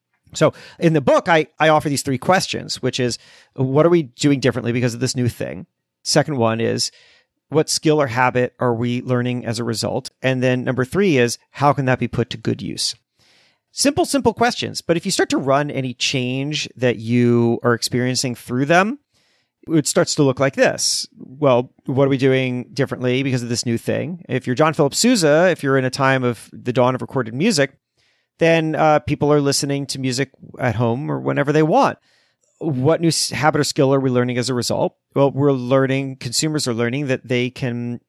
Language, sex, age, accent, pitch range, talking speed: English, male, 40-59, American, 125-150 Hz, 210 wpm